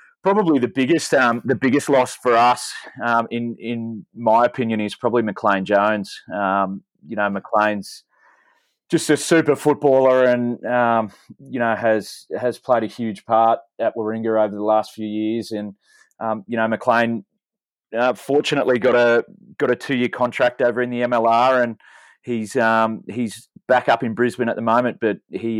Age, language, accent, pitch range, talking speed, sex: 30-49, English, Australian, 110-135 Hz, 175 wpm, male